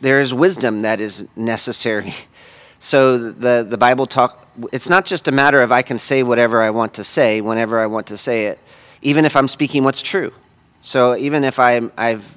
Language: English